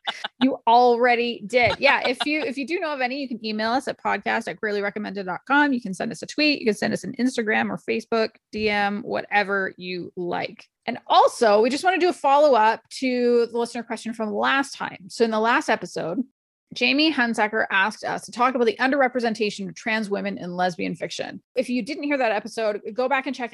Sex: female